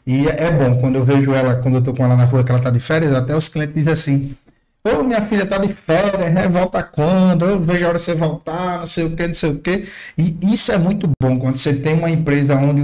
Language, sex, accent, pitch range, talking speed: Portuguese, male, Brazilian, 135-170 Hz, 275 wpm